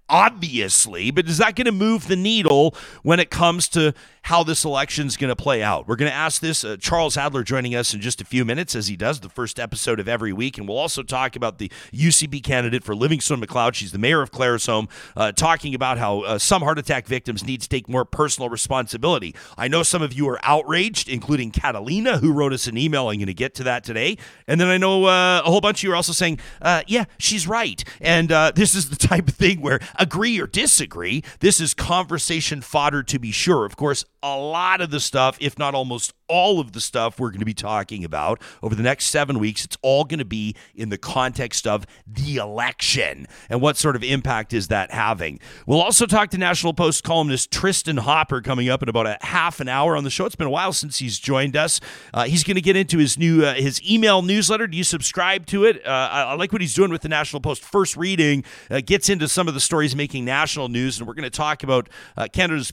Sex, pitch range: male, 125-170 Hz